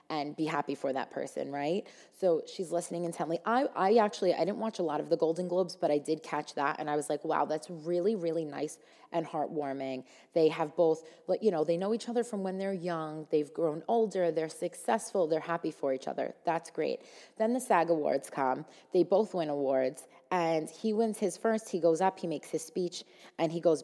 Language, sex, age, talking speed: English, female, 20-39, 220 wpm